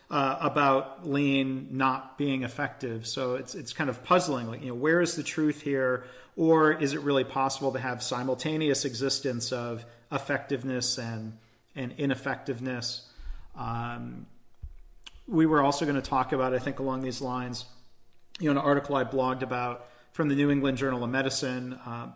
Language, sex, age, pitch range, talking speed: English, male, 40-59, 125-140 Hz, 170 wpm